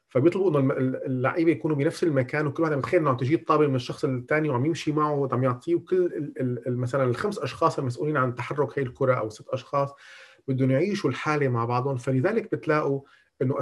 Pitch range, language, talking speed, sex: 120-155 Hz, Arabic, 180 wpm, male